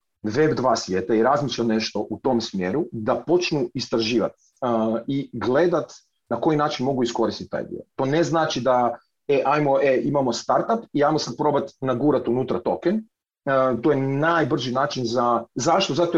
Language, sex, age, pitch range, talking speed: Croatian, male, 40-59, 115-155 Hz, 165 wpm